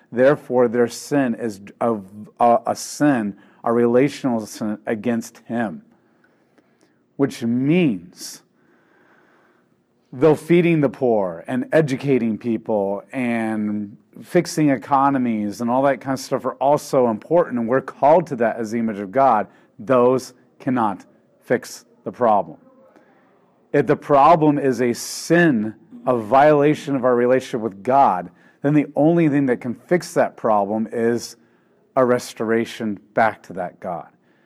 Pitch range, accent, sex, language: 115-140 Hz, American, male, English